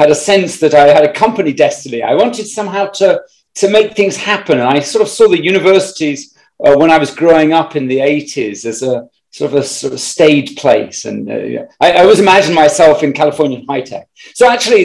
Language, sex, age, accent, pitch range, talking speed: English, male, 40-59, British, 145-220 Hz, 225 wpm